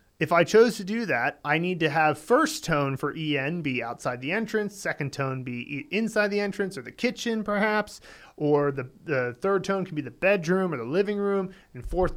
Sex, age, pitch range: male, 30-49, 145-195 Hz